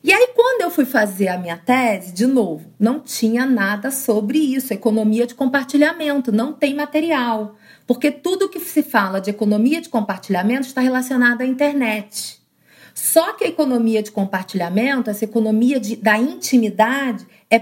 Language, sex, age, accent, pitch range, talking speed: Portuguese, female, 40-59, Brazilian, 220-300 Hz, 155 wpm